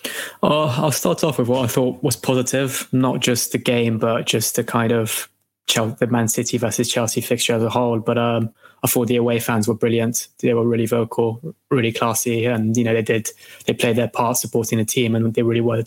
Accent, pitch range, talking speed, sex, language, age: British, 115-120 Hz, 230 wpm, male, English, 20-39